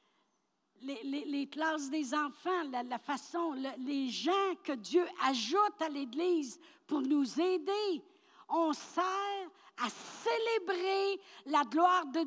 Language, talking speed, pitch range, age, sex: French, 130 wpm, 245-345 Hz, 60-79, female